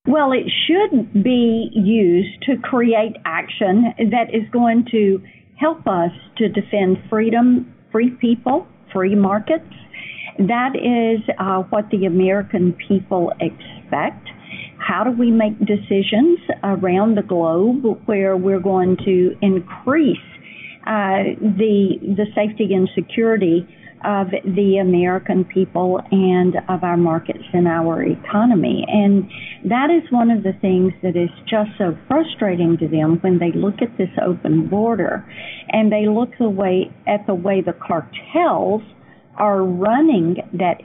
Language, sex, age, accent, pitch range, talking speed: English, female, 50-69, American, 185-230 Hz, 135 wpm